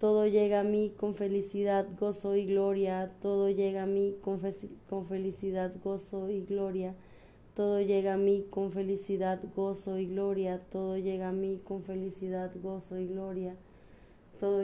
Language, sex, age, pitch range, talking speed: Spanish, female, 20-39, 190-210 Hz, 150 wpm